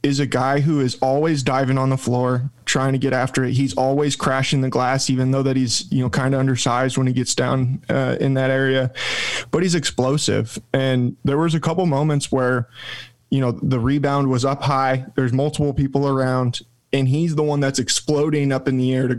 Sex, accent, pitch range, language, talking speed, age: male, American, 125-140 Hz, English, 215 wpm, 20-39